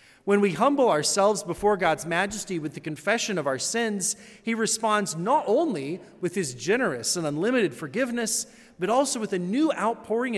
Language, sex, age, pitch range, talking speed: English, male, 30-49, 155-215 Hz, 170 wpm